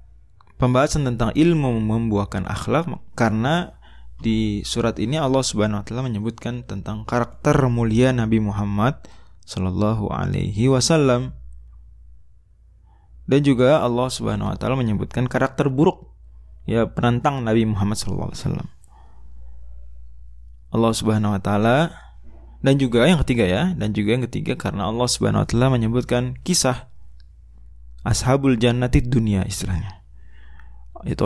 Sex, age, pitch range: male, 20-39, 95-125 Hz